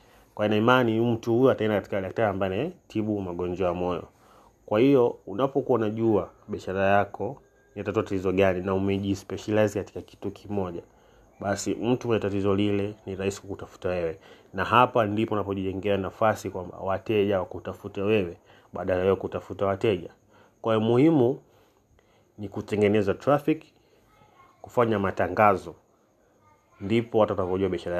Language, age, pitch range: Swahili, 30-49, 100-115 Hz